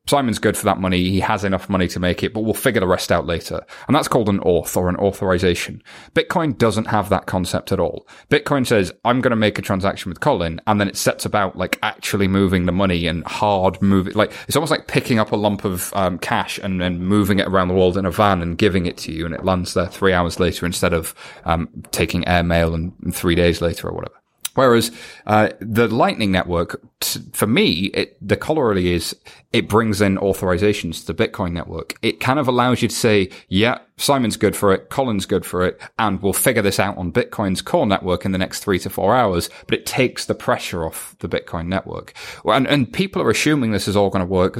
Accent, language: British, English